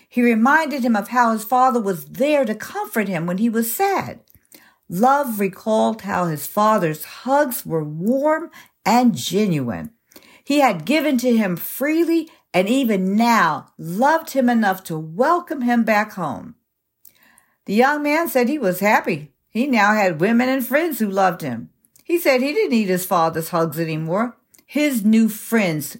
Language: English